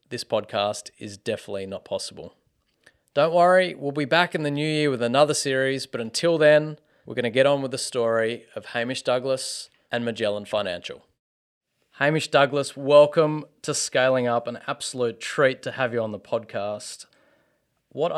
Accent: Australian